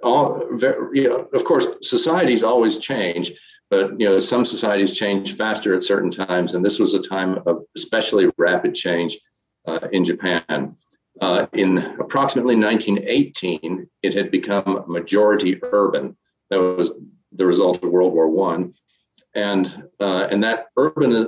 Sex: male